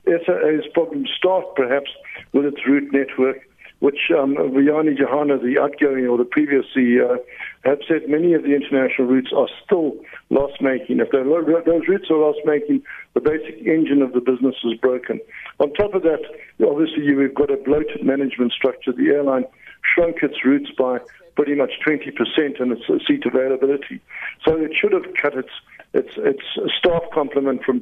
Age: 60-79